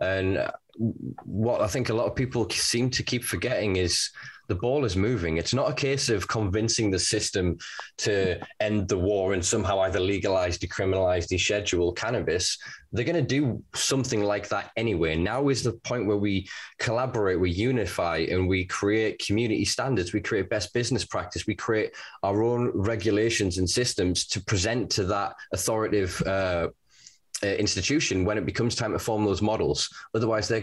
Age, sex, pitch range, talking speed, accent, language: 20-39, male, 95-120 Hz, 170 wpm, British, English